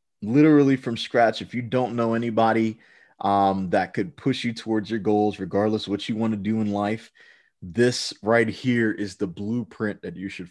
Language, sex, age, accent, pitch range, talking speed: English, male, 30-49, American, 95-115 Hz, 195 wpm